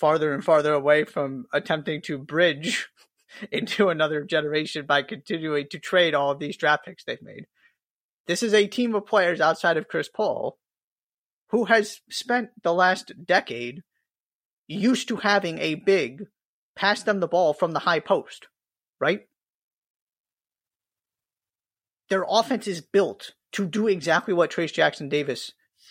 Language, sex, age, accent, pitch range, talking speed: English, male, 30-49, American, 150-200 Hz, 145 wpm